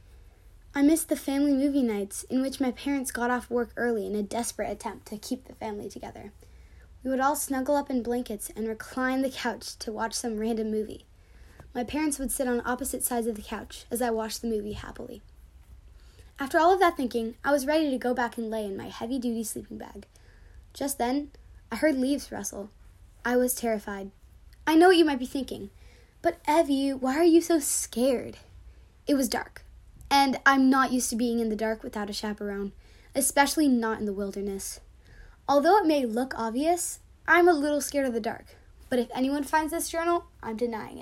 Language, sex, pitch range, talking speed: English, female, 220-280 Hz, 200 wpm